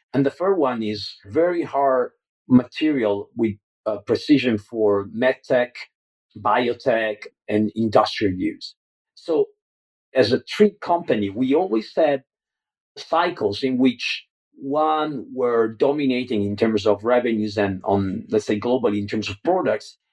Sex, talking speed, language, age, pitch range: male, 130 wpm, English, 50-69, 105-140 Hz